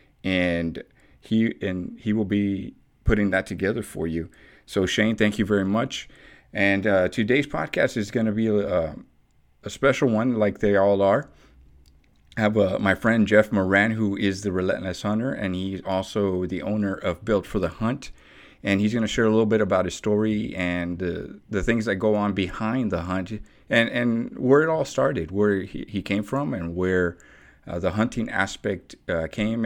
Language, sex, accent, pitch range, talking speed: English, male, American, 95-110 Hz, 190 wpm